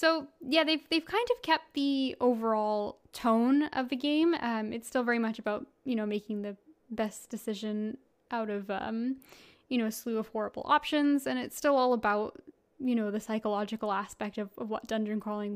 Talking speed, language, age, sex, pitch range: 195 wpm, English, 10-29, female, 220-285 Hz